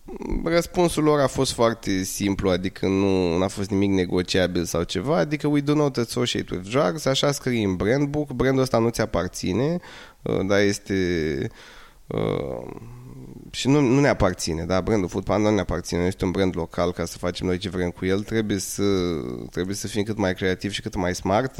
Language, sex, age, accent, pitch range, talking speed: Romanian, male, 20-39, native, 95-145 Hz, 190 wpm